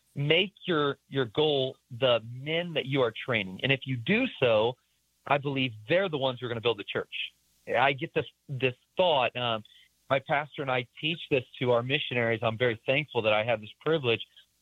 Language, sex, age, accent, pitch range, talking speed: English, male, 40-59, American, 120-160 Hz, 205 wpm